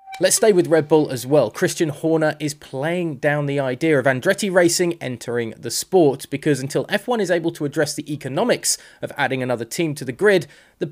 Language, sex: English, male